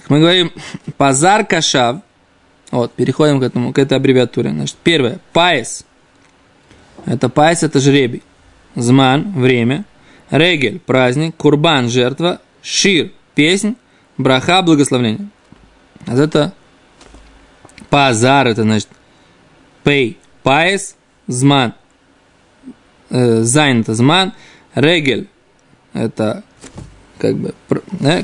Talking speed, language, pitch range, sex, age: 115 wpm, Russian, 125-170 Hz, male, 20-39